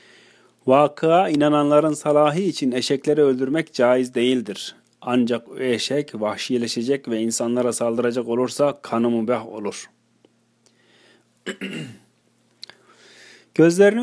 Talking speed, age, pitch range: 80 wpm, 40-59, 120-155 Hz